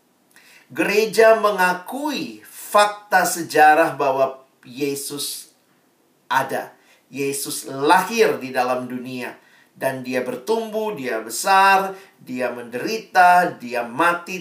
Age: 40-59